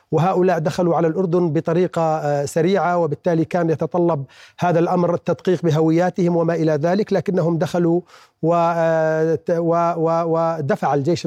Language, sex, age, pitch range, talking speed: Arabic, male, 40-59, 160-190 Hz, 105 wpm